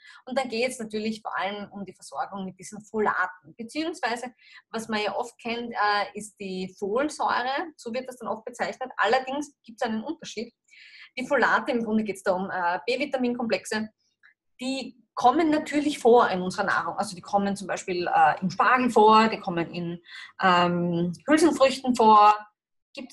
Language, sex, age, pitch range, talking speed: German, female, 20-39, 200-255 Hz, 175 wpm